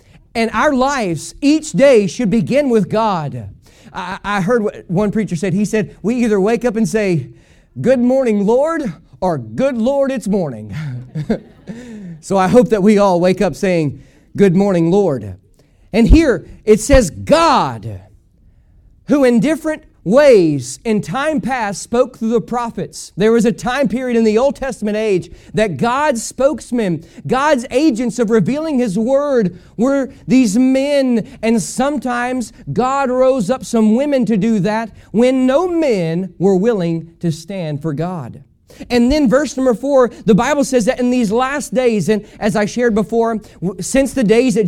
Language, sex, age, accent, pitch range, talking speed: English, male, 40-59, American, 190-255 Hz, 165 wpm